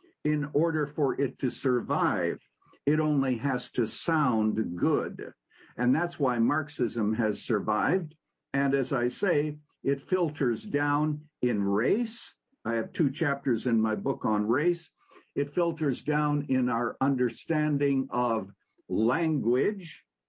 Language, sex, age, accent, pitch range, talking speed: English, male, 60-79, American, 120-170 Hz, 130 wpm